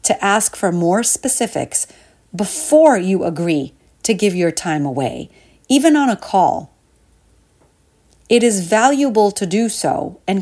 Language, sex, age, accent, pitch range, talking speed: English, female, 40-59, American, 170-225 Hz, 140 wpm